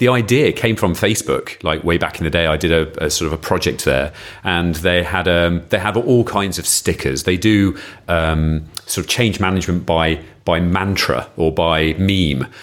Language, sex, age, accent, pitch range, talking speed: English, male, 40-59, British, 85-105 Hz, 205 wpm